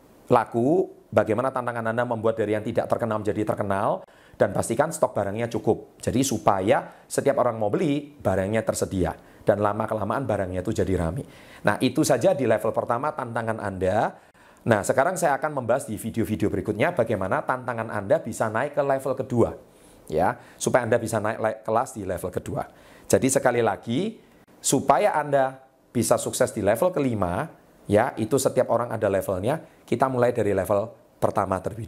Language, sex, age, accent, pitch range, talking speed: Indonesian, male, 30-49, native, 100-130 Hz, 160 wpm